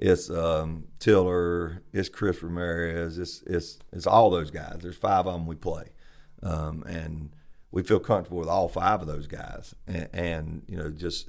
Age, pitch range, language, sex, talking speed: 40-59, 80-95 Hz, English, male, 180 wpm